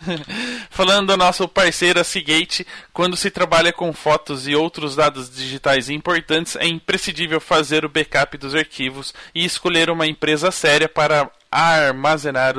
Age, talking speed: 20-39, 155 wpm